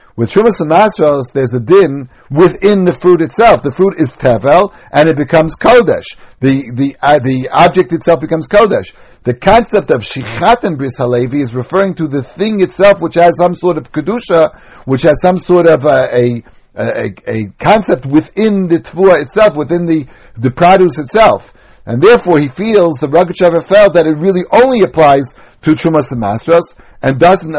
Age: 60-79